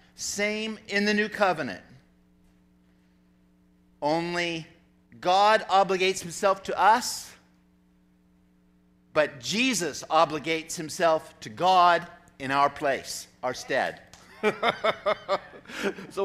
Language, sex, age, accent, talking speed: English, male, 50-69, American, 85 wpm